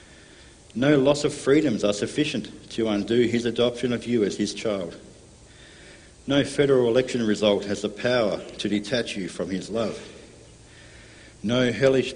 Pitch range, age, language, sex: 105-125 Hz, 60-79, English, male